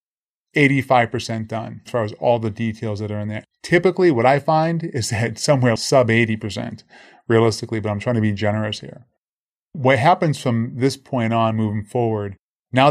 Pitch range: 110-135 Hz